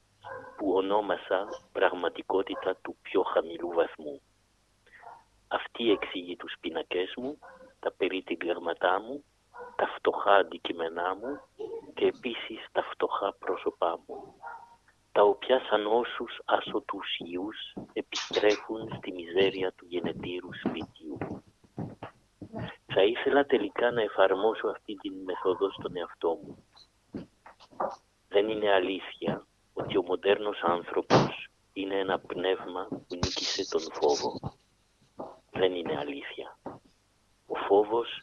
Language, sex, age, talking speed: Greek, male, 50-69, 105 wpm